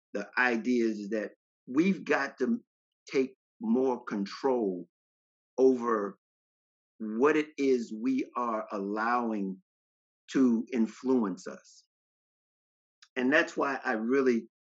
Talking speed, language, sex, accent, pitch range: 105 wpm, English, male, American, 115-175 Hz